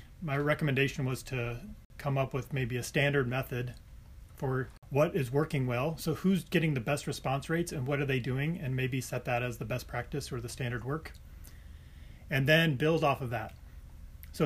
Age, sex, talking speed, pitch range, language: 30-49, male, 195 wpm, 125-155 Hz, English